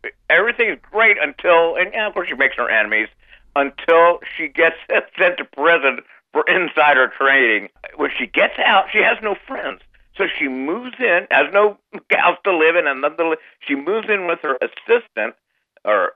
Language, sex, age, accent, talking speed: English, male, 60-79, American, 180 wpm